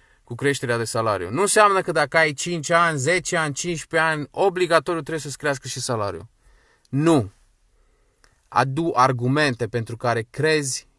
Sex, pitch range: male, 120-160 Hz